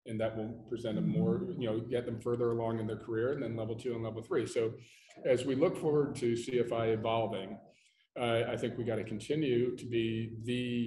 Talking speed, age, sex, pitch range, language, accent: 220 wpm, 40-59, male, 110-125 Hz, English, American